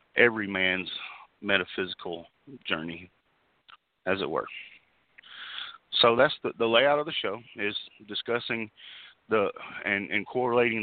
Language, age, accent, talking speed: English, 40-59, American, 115 wpm